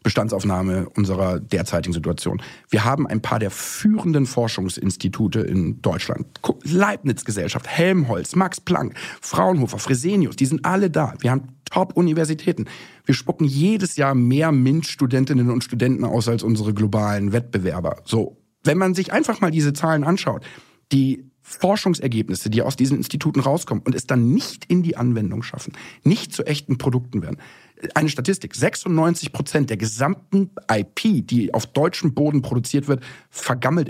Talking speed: 145 wpm